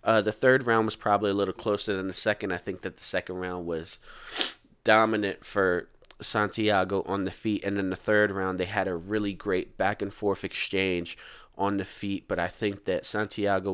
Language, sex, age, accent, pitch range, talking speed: English, male, 20-39, American, 95-110 Hz, 205 wpm